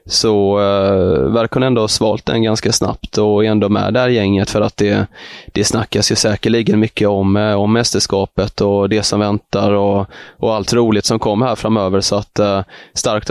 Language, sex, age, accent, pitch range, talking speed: Swedish, male, 20-39, native, 100-110 Hz, 195 wpm